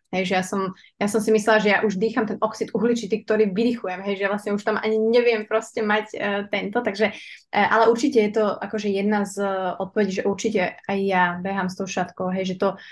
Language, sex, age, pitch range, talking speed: Slovak, female, 20-39, 185-215 Hz, 230 wpm